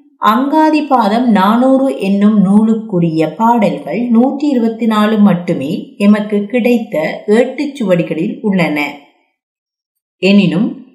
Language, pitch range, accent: Tamil, 205-265 Hz, native